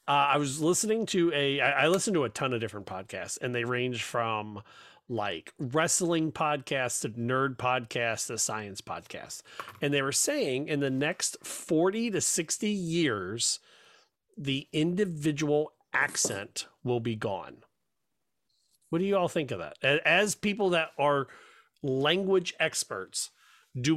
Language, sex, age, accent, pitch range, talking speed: English, male, 40-59, American, 130-165 Hz, 150 wpm